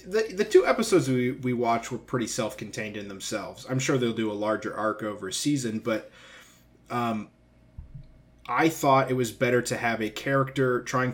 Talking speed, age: 185 wpm, 20-39